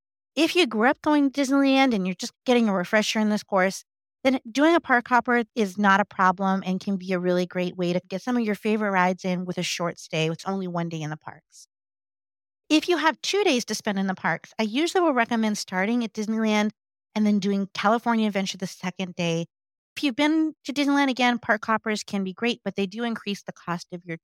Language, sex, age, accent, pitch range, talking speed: English, female, 40-59, American, 185-250 Hz, 235 wpm